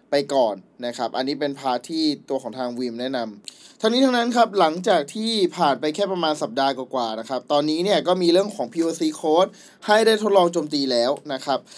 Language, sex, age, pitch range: Thai, male, 20-39, 135-180 Hz